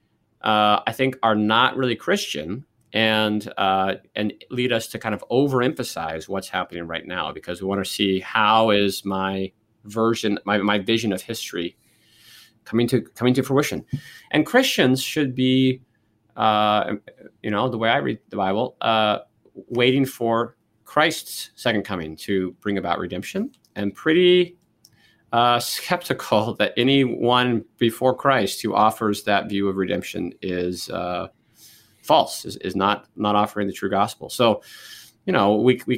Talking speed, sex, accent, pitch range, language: 155 wpm, male, American, 95-120 Hz, English